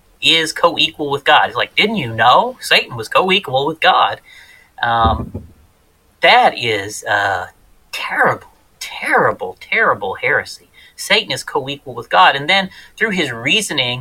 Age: 30-49